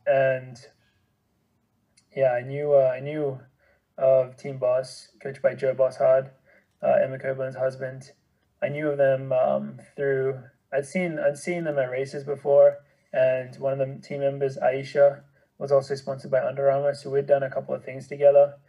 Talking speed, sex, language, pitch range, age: 170 wpm, male, English, 130-145 Hz, 20-39